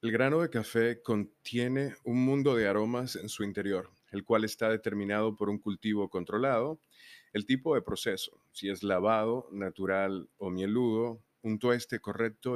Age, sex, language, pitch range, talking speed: 30-49, male, Spanish, 100-120 Hz, 160 wpm